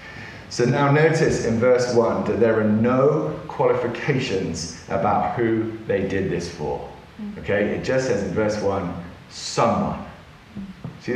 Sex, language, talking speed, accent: male, English, 140 wpm, British